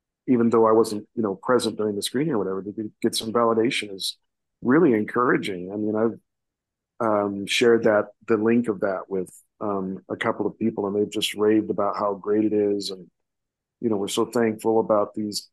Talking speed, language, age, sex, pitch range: 200 wpm, English, 50-69, male, 105-120 Hz